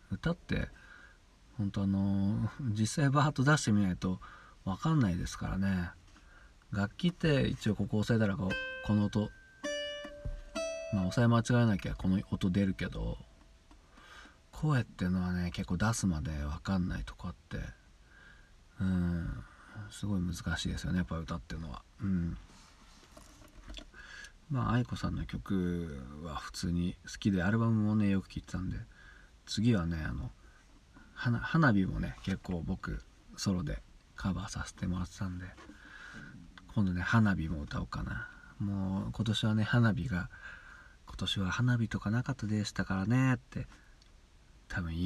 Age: 40-59